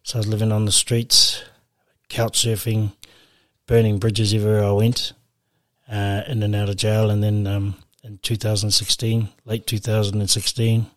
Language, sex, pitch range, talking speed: English, male, 105-115 Hz, 165 wpm